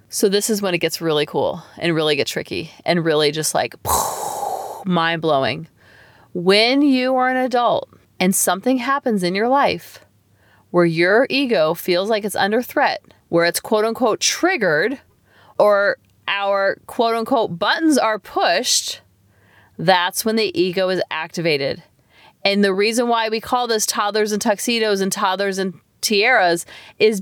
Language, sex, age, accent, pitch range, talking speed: English, female, 30-49, American, 190-255 Hz, 150 wpm